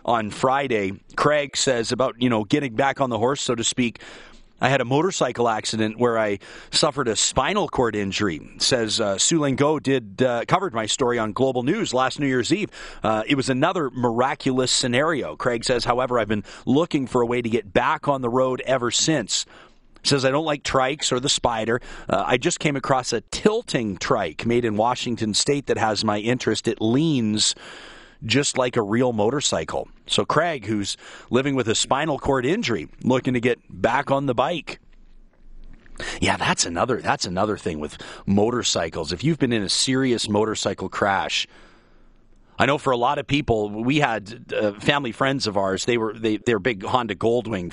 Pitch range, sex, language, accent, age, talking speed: 105-130 Hz, male, English, American, 40-59, 190 wpm